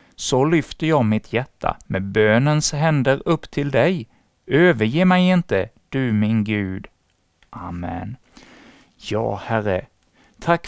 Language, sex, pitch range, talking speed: Swedish, male, 115-155 Hz, 120 wpm